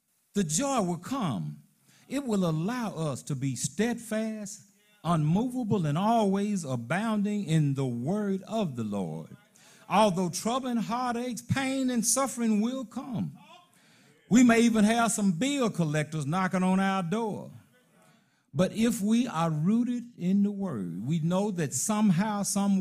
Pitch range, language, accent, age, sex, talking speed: 155-225 Hz, English, American, 50-69, male, 140 wpm